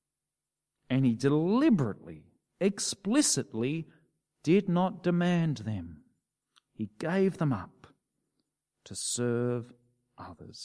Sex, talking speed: male, 85 wpm